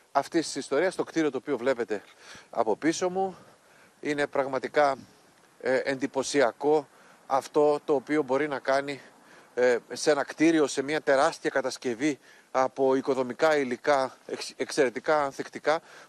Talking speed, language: 130 wpm, Greek